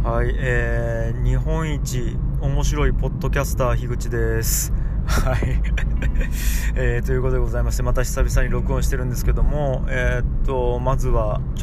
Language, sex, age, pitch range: Japanese, male, 20-39, 100-125 Hz